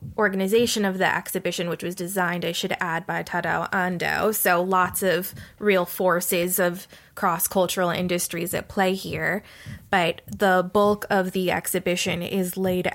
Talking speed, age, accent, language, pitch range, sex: 150 wpm, 20-39, American, English, 175-200 Hz, female